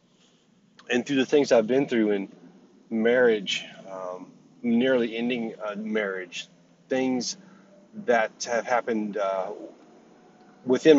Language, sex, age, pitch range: English, male, 30-49, 110-140 Hz